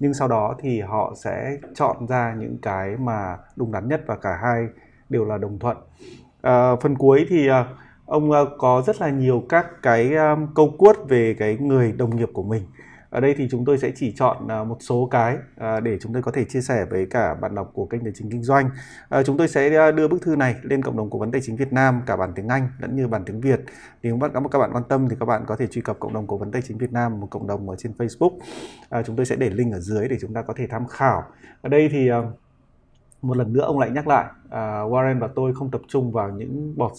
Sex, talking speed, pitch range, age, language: male, 250 wpm, 110-135 Hz, 20-39, Vietnamese